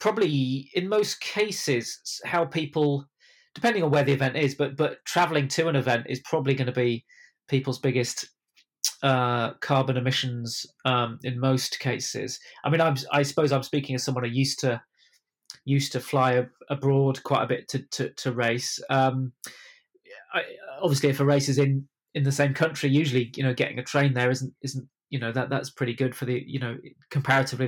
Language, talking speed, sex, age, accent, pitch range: English, 190 wpm, male, 20-39, British, 130-145 Hz